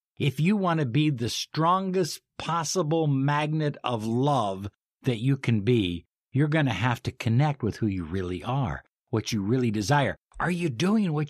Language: English